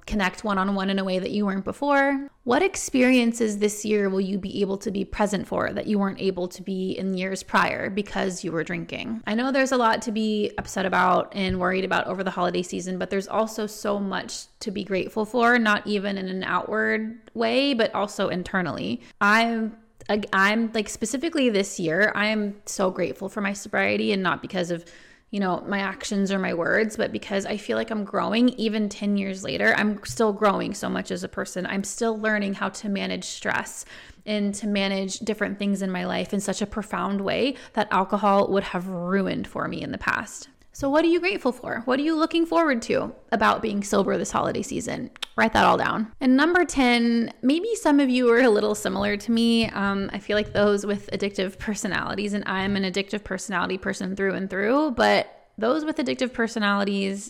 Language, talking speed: English, 205 wpm